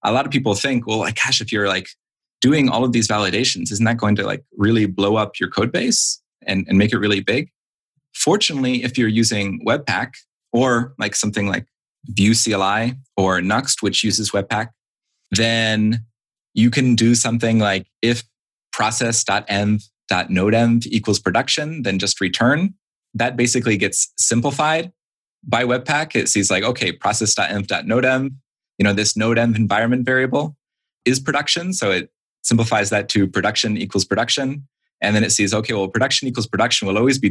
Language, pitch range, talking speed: English, 105-125 Hz, 160 wpm